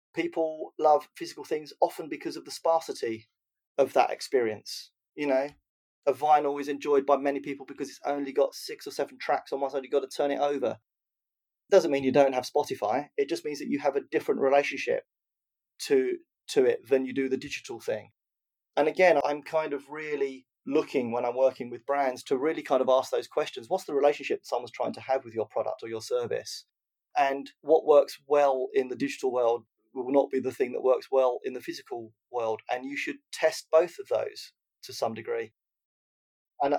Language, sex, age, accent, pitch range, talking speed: English, male, 30-49, British, 135-170 Hz, 205 wpm